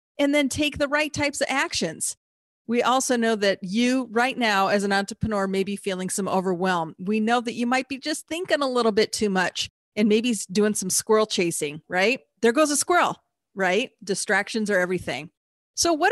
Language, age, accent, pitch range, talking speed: English, 40-59, American, 185-245 Hz, 195 wpm